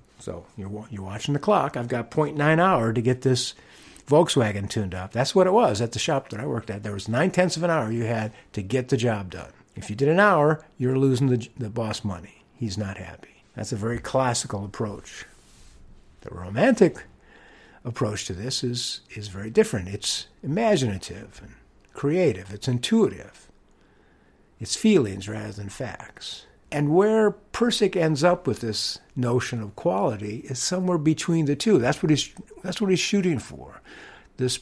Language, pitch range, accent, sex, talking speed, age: English, 105-155 Hz, American, male, 180 wpm, 60-79